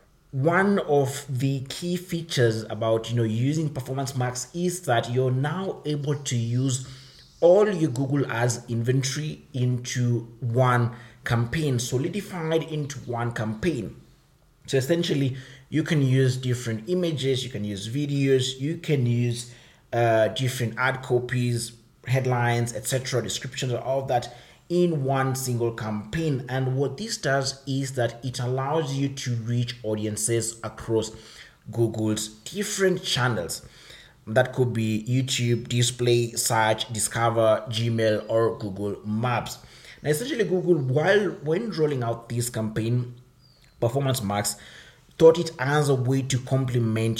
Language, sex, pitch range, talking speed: English, male, 115-140 Hz, 130 wpm